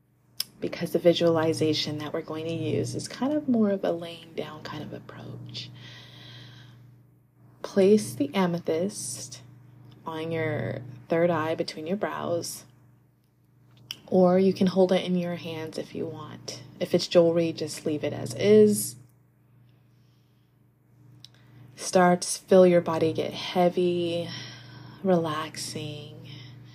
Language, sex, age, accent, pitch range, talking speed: English, female, 30-49, American, 125-170 Hz, 125 wpm